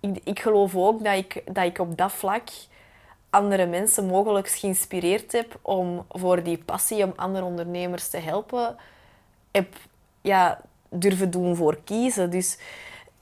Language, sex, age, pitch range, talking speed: Dutch, female, 20-39, 175-210 Hz, 145 wpm